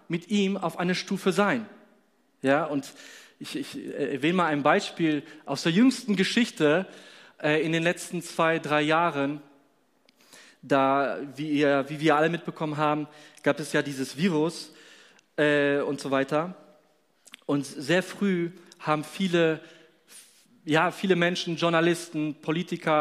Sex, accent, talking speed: male, German, 140 wpm